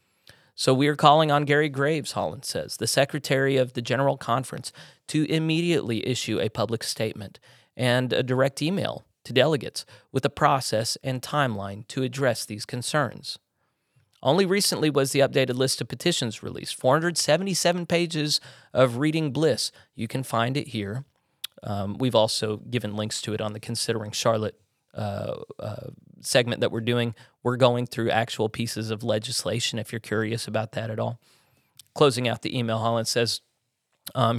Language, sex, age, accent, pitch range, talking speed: English, male, 30-49, American, 110-140 Hz, 160 wpm